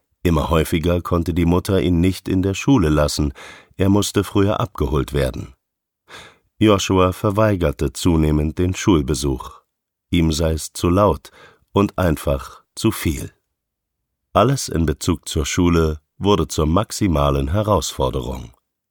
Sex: male